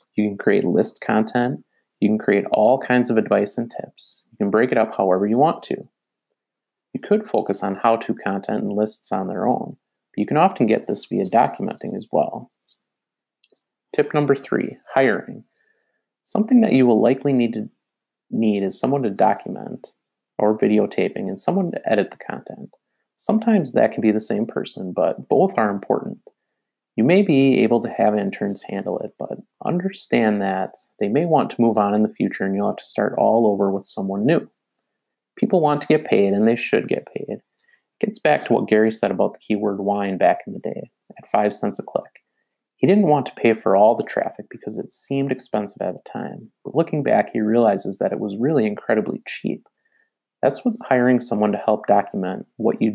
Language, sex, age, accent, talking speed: English, male, 30-49, American, 200 wpm